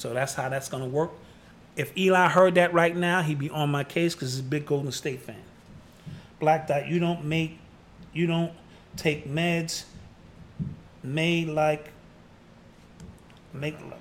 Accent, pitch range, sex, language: American, 155-195 Hz, male, English